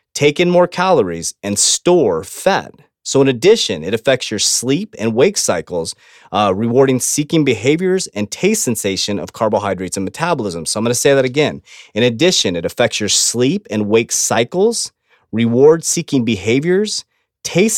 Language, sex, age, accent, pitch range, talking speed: English, male, 30-49, American, 105-155 Hz, 160 wpm